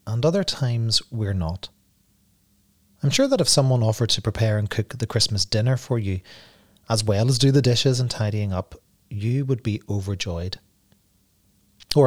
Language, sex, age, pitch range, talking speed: English, male, 30-49, 100-125 Hz, 170 wpm